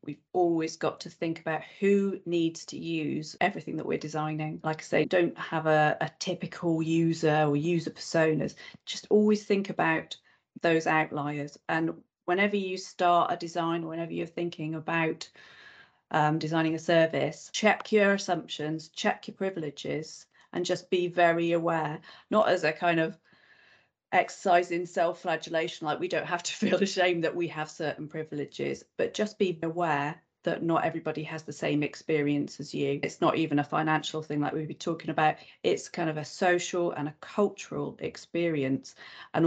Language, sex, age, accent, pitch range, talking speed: English, female, 40-59, British, 150-175 Hz, 165 wpm